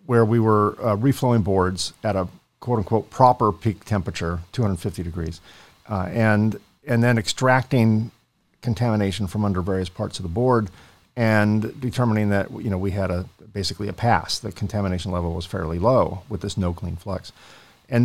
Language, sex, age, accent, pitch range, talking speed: English, male, 50-69, American, 100-120 Hz, 165 wpm